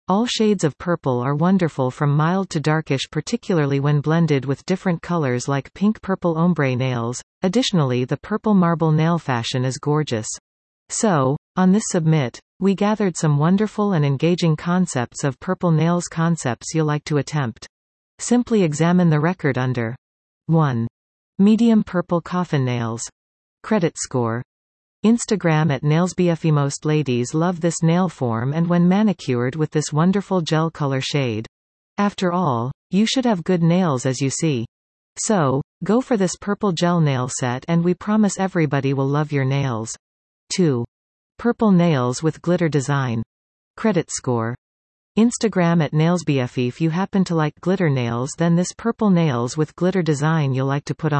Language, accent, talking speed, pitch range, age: English, American, 155 wpm, 130-180 Hz, 40-59